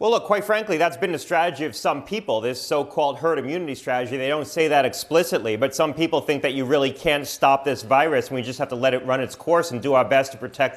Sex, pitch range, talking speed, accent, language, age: male, 130-160 Hz, 270 wpm, American, English, 30-49